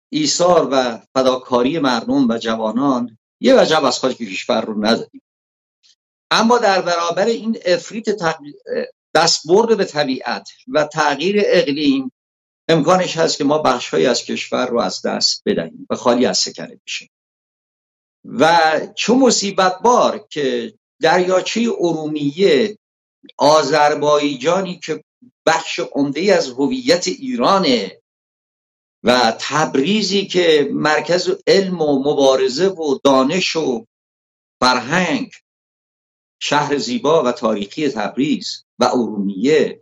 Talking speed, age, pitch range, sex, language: 110 wpm, 50-69, 130-200 Hz, male, English